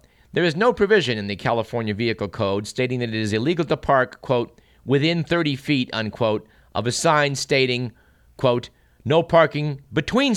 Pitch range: 110-150 Hz